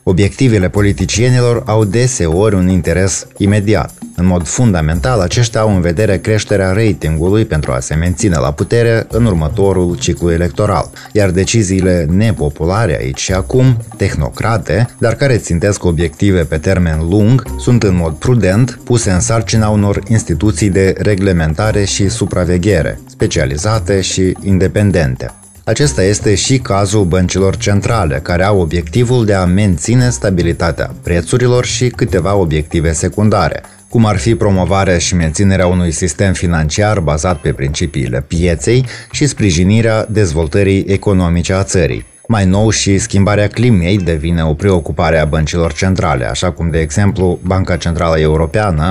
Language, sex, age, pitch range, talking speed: Romanian, male, 20-39, 85-110 Hz, 135 wpm